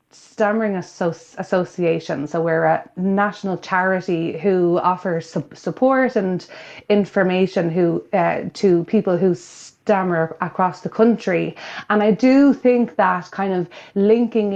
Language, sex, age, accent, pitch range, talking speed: English, female, 30-49, Irish, 180-215 Hz, 120 wpm